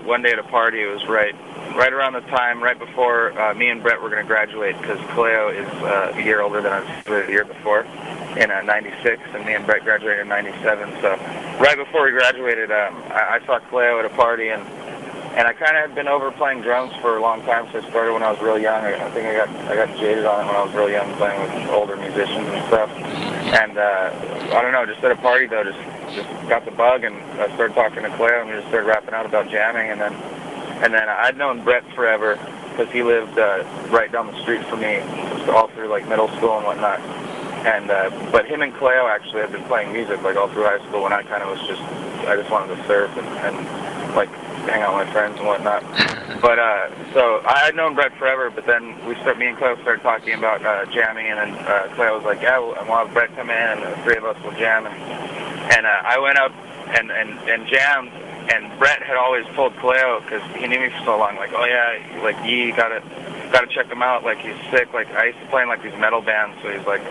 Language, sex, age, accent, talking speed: English, male, 30-49, American, 255 wpm